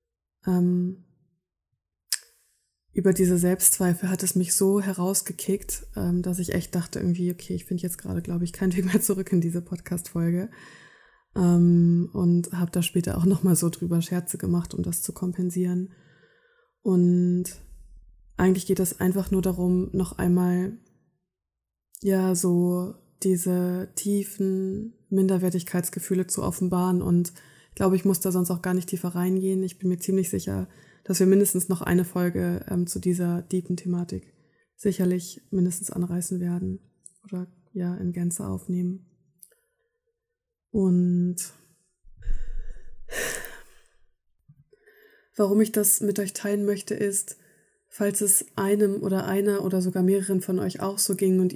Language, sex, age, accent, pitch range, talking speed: German, female, 20-39, German, 175-195 Hz, 135 wpm